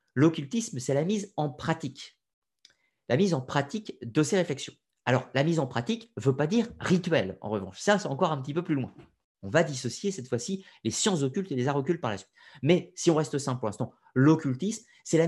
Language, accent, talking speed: French, French, 230 wpm